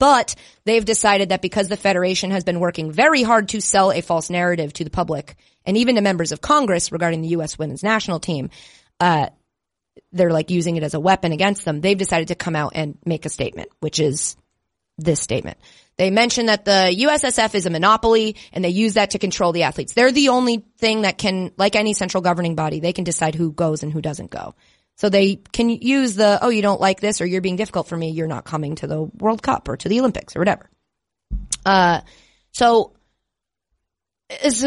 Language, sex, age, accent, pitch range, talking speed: English, female, 30-49, American, 165-215 Hz, 215 wpm